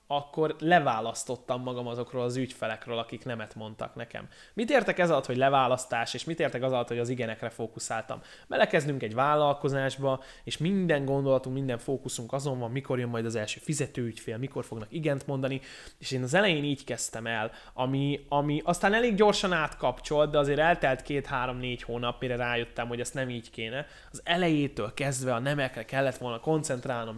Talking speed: 170 wpm